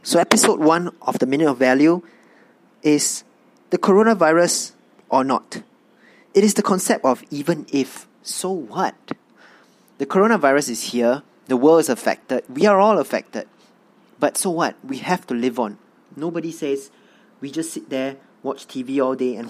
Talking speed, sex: 165 wpm, male